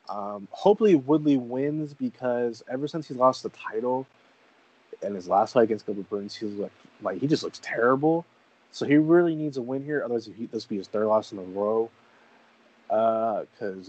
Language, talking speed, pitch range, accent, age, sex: English, 195 wpm, 110-140 Hz, American, 20-39, male